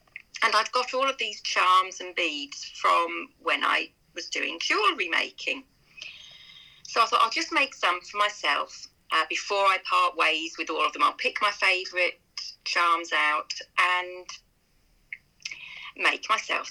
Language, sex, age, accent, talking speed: English, female, 40-59, British, 160 wpm